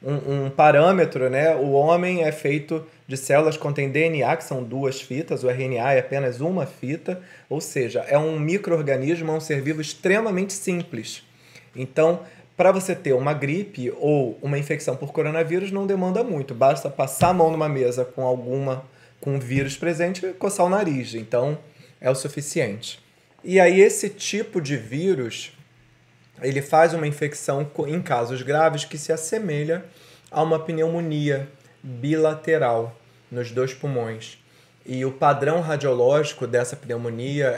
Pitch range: 130-160 Hz